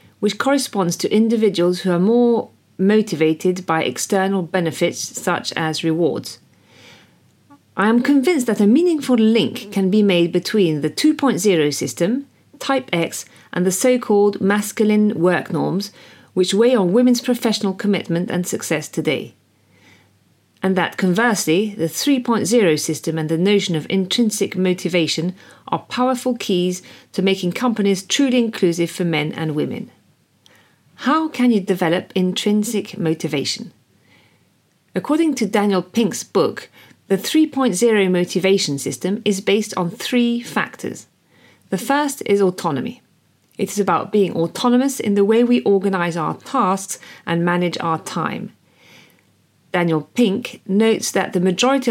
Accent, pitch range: British, 170-225 Hz